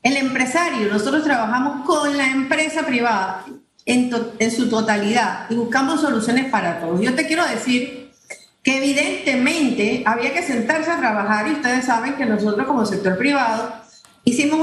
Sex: female